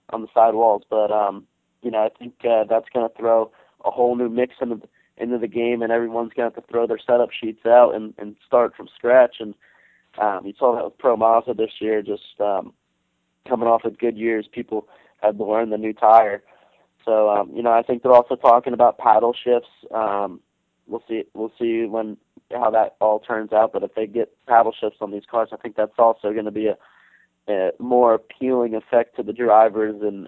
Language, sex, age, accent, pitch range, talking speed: English, male, 20-39, American, 110-120 Hz, 220 wpm